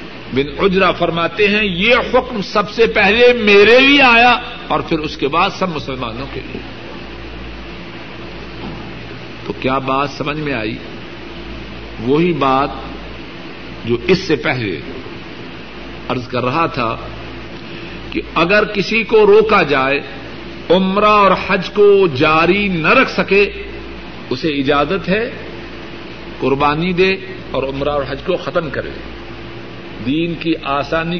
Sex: male